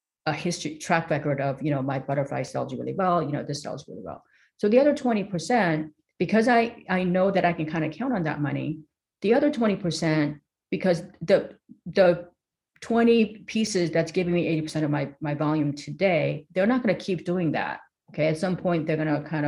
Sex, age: female, 40-59